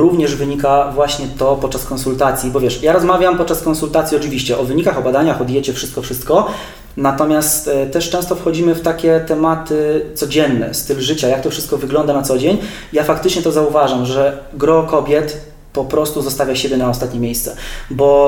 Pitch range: 140-155 Hz